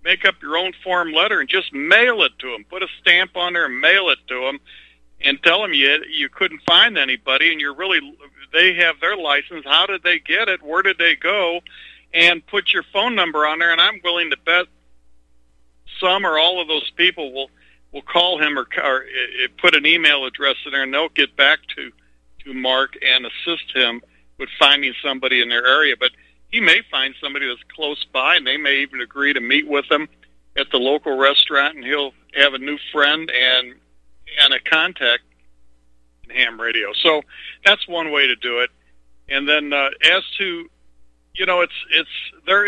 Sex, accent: male, American